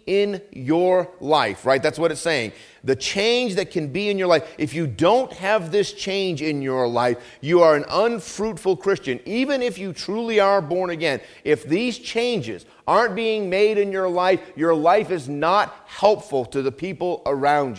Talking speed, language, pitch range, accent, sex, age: 185 wpm, English, 150-220 Hz, American, male, 50-69